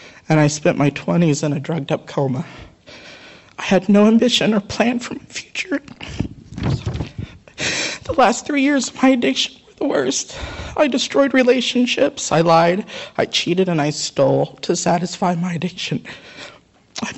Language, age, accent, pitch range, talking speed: English, 50-69, American, 160-220 Hz, 150 wpm